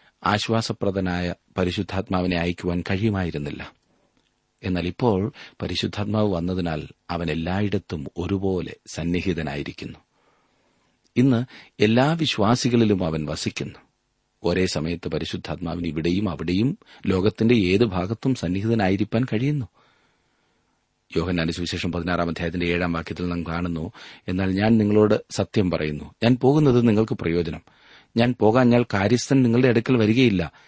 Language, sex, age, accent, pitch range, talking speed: Malayalam, male, 40-59, native, 85-115 Hz, 100 wpm